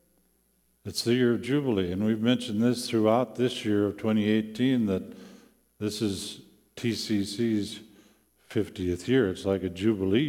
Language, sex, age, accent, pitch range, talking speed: English, male, 50-69, American, 95-130 Hz, 140 wpm